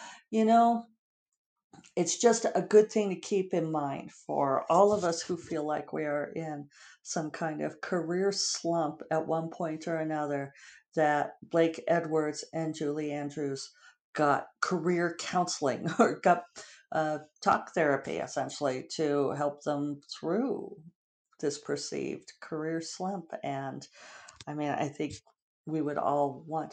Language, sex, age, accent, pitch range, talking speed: English, female, 50-69, American, 155-215 Hz, 140 wpm